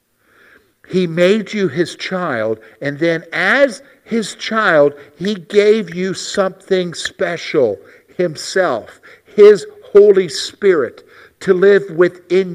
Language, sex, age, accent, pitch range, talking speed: English, male, 50-69, American, 180-240 Hz, 105 wpm